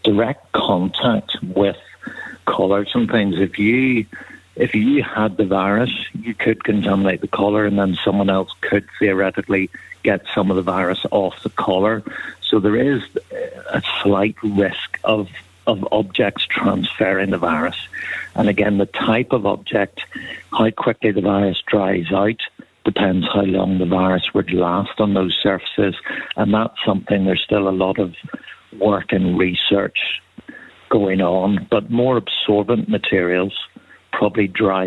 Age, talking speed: 60-79, 145 wpm